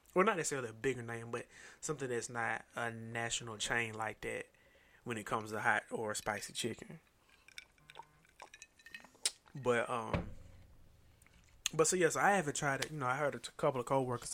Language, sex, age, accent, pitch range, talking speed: English, male, 20-39, American, 115-135 Hz, 175 wpm